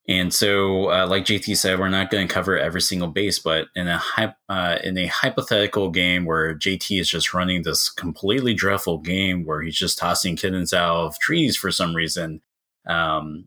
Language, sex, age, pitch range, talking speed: English, male, 20-39, 85-100 Hz, 195 wpm